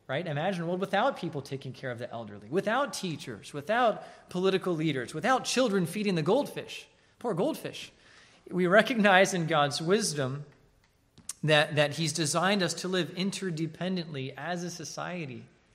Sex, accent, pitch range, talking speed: male, American, 130-175 Hz, 145 wpm